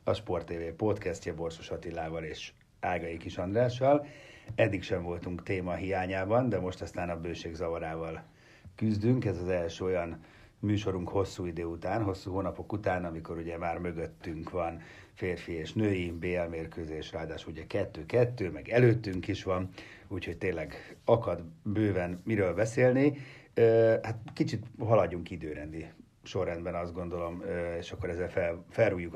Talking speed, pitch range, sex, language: 140 wpm, 85-105 Hz, male, Hungarian